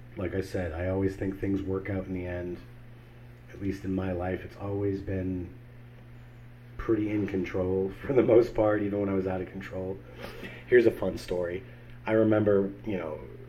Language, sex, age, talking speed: English, male, 30-49, 190 wpm